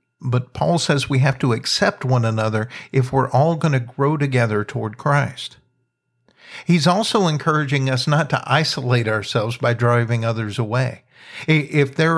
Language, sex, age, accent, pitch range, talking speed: English, male, 50-69, American, 125-150 Hz, 160 wpm